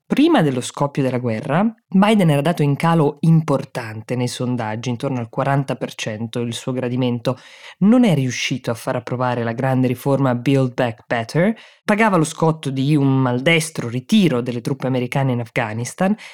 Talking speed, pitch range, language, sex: 160 wpm, 125-155 Hz, Italian, female